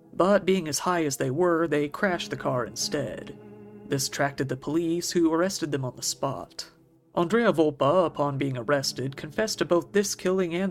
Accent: American